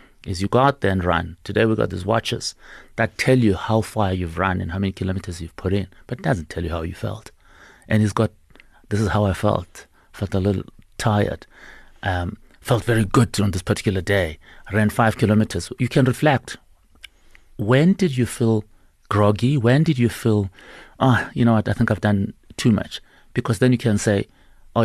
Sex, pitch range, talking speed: male, 95-115 Hz, 210 wpm